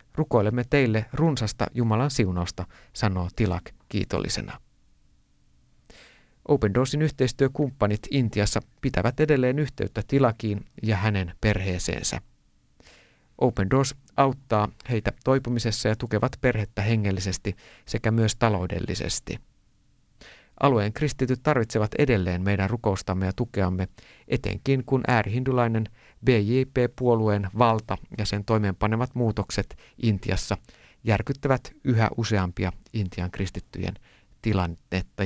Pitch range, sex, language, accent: 100-125 Hz, male, Finnish, native